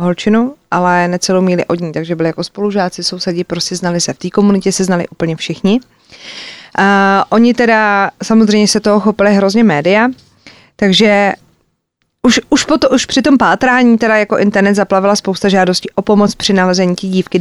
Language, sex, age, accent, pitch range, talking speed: Czech, female, 30-49, native, 185-215 Hz, 170 wpm